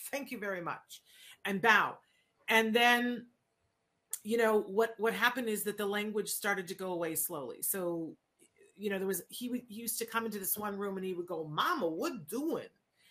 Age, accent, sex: 40-59, American, female